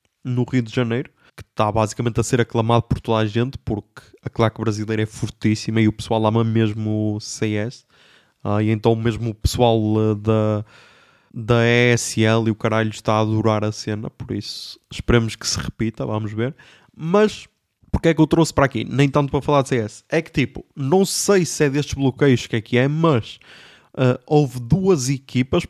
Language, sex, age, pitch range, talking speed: Portuguese, male, 20-39, 110-130 Hz, 195 wpm